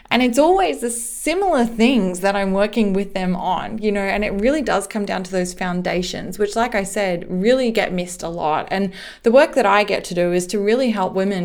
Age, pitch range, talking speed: 20-39, 185-210 Hz, 235 wpm